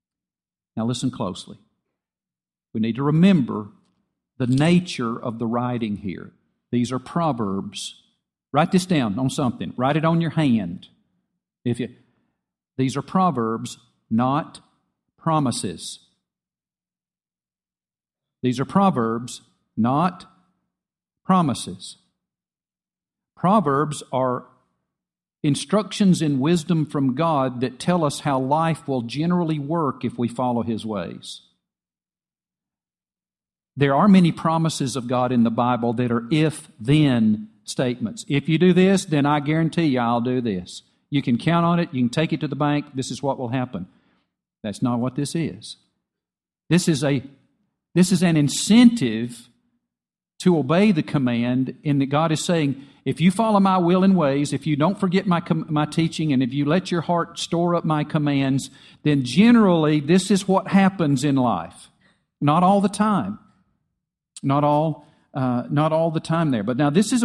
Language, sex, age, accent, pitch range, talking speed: English, male, 50-69, American, 125-175 Hz, 150 wpm